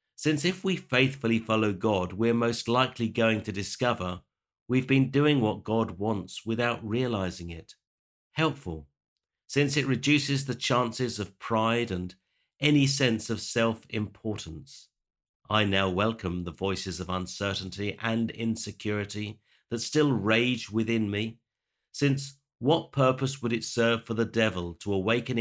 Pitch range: 95-125 Hz